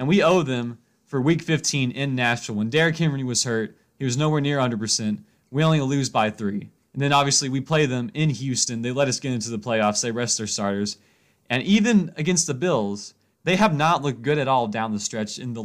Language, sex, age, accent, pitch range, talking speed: English, male, 30-49, American, 115-155 Hz, 230 wpm